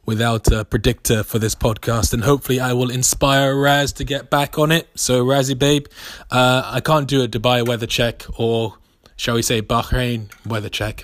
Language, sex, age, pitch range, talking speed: English, male, 20-39, 115-135 Hz, 190 wpm